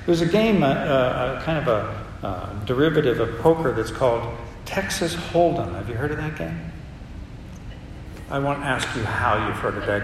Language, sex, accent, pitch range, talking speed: English, male, American, 130-165 Hz, 190 wpm